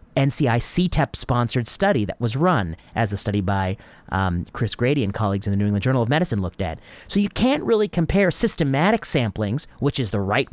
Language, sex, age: English, male, 30-49